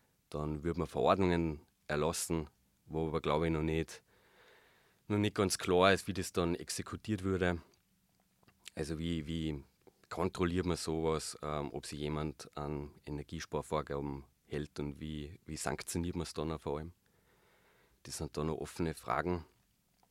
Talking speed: 145 wpm